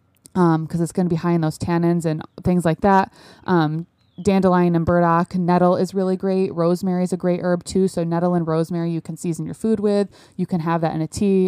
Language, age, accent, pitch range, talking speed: English, 20-39, American, 160-185 Hz, 235 wpm